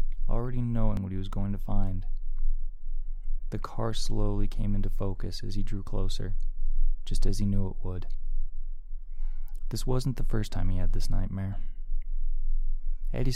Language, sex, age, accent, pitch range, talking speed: English, male, 20-39, American, 95-110 Hz, 155 wpm